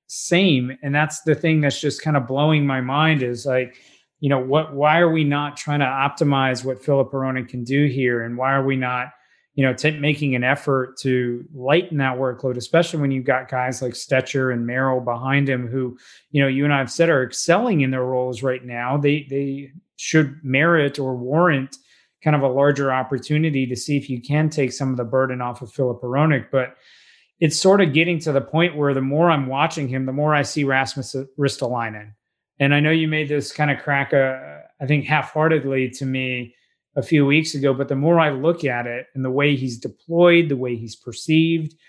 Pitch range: 130-155 Hz